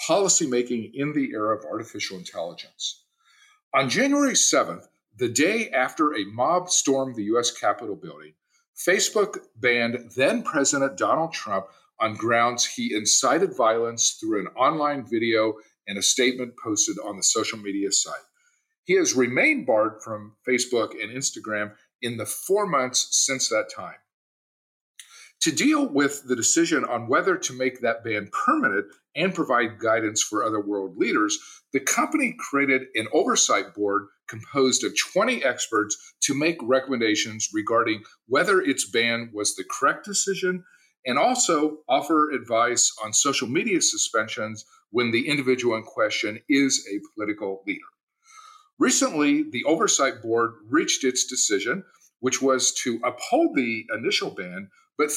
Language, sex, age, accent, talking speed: English, male, 50-69, American, 140 wpm